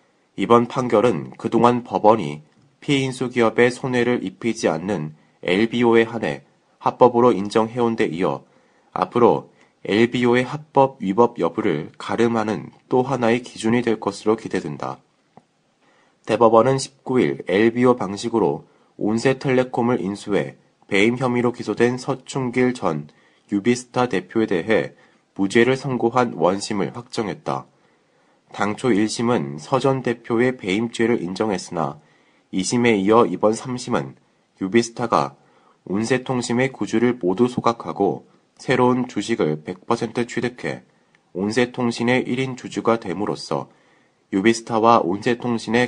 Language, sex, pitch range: Korean, male, 100-125 Hz